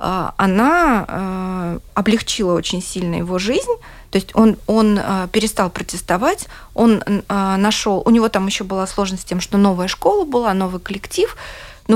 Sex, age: female, 30-49